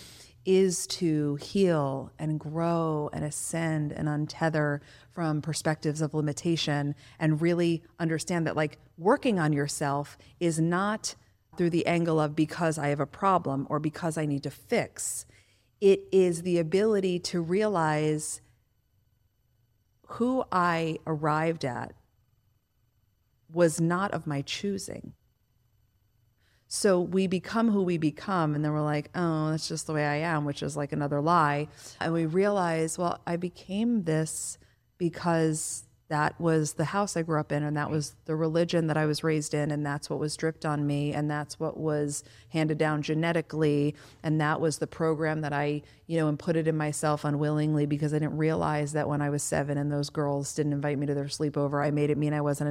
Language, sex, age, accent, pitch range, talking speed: English, female, 40-59, American, 145-165 Hz, 175 wpm